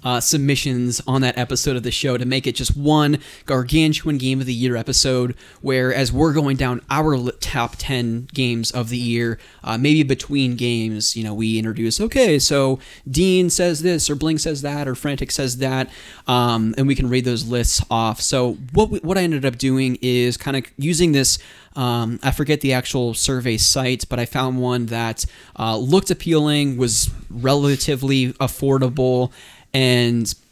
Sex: male